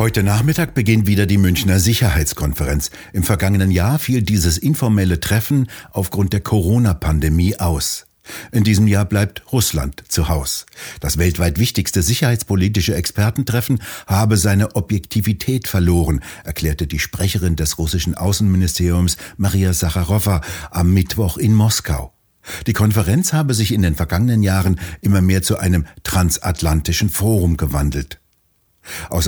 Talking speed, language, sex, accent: 125 wpm, German, male, German